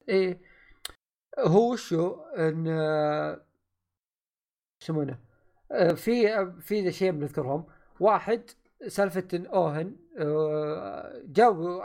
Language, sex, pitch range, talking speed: Arabic, male, 150-200 Hz, 90 wpm